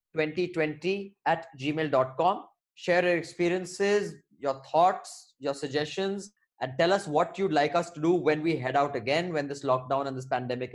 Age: 20-39